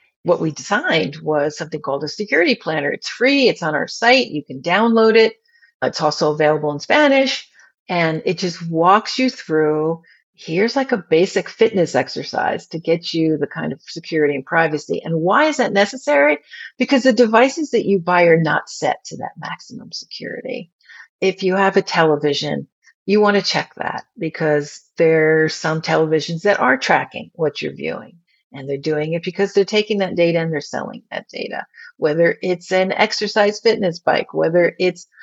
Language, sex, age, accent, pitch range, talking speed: English, female, 50-69, American, 155-210 Hz, 180 wpm